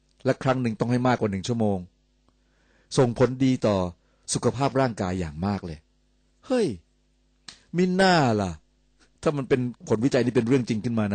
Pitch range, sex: 95-120 Hz, male